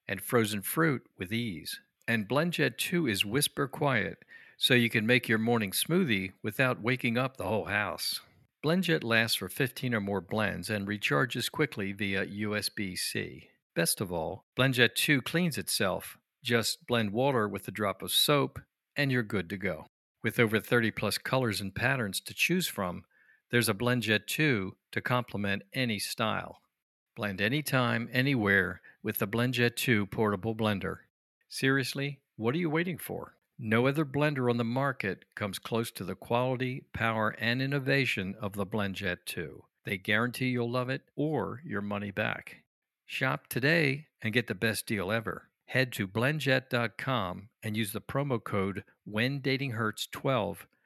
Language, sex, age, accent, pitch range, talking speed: English, male, 50-69, American, 105-130 Hz, 160 wpm